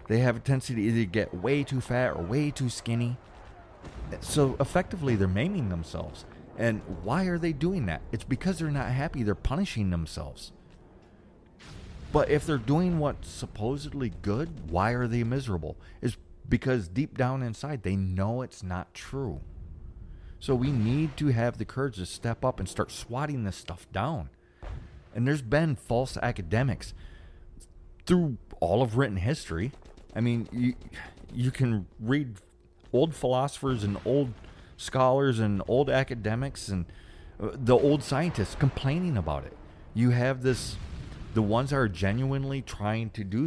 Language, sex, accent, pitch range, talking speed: English, male, American, 90-130 Hz, 155 wpm